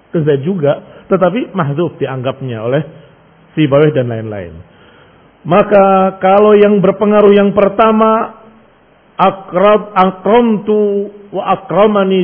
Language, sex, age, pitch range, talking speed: Indonesian, male, 50-69, 145-205 Hz, 100 wpm